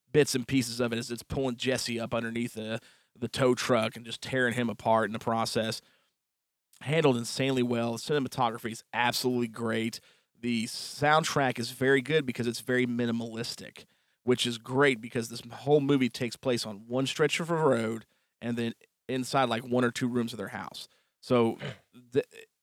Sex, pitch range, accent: male, 115-130 Hz, American